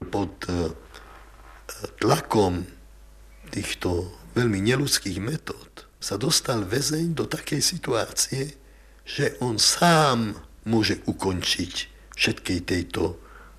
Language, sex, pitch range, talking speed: Czech, male, 100-140 Hz, 80 wpm